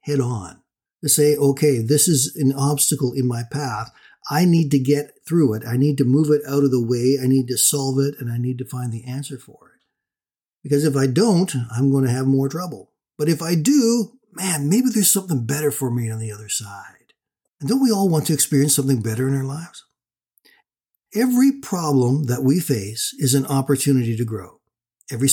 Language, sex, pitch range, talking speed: English, male, 130-165 Hz, 210 wpm